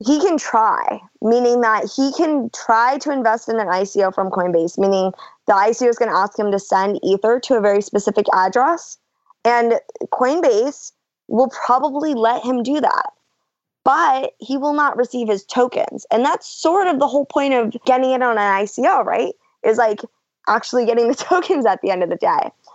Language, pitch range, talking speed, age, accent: English, 200-260 Hz, 190 wpm, 20-39, American